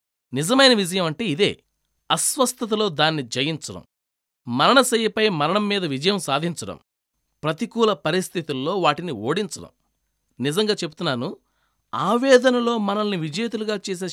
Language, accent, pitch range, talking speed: Telugu, native, 135-200 Hz, 90 wpm